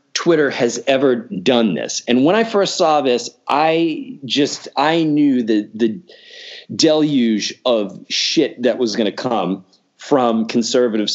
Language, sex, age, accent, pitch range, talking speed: English, male, 30-49, American, 125-175 Hz, 145 wpm